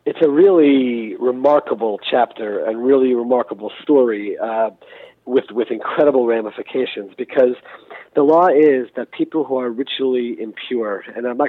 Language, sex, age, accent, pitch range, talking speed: English, male, 40-59, American, 125-170 Hz, 140 wpm